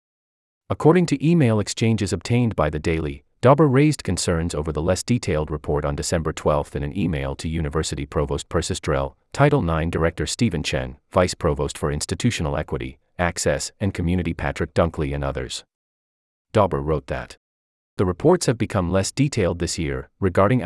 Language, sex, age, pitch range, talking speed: English, male, 30-49, 75-110 Hz, 160 wpm